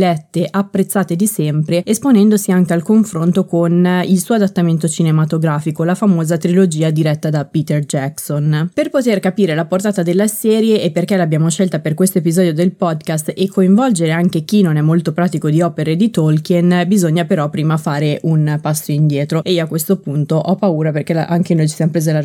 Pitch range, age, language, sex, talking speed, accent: 160-195 Hz, 20-39, Italian, female, 185 wpm, native